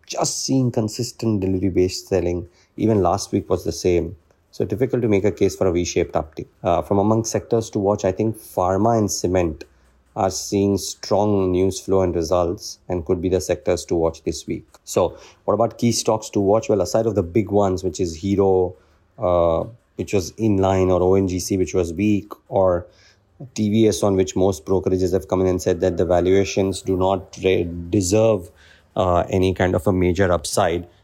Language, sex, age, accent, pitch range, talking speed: English, male, 30-49, Indian, 90-100 Hz, 190 wpm